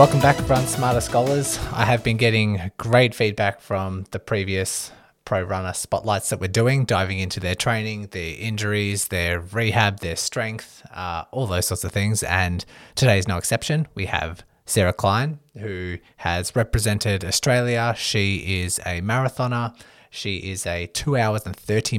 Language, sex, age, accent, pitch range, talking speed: English, male, 20-39, Australian, 95-115 Hz, 165 wpm